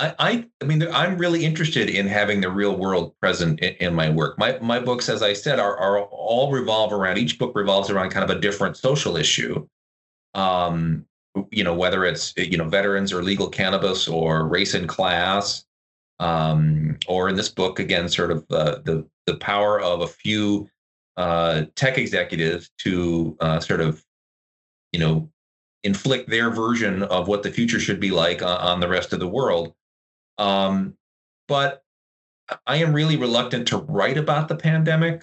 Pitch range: 80-105 Hz